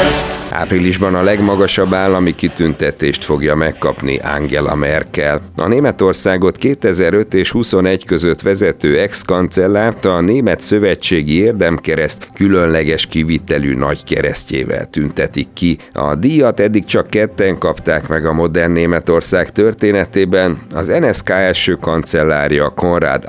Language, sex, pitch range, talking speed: Hungarian, male, 80-100 Hz, 110 wpm